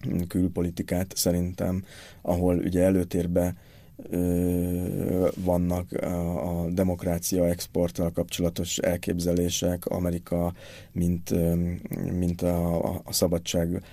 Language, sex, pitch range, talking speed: Hungarian, male, 85-95 Hz, 70 wpm